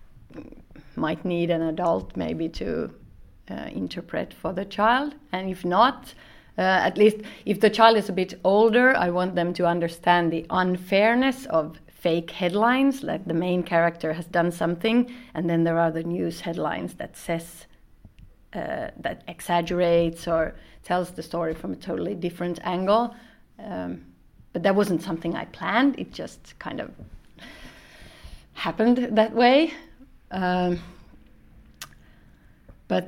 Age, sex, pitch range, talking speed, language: 30-49, female, 170-210 Hz, 140 wpm, English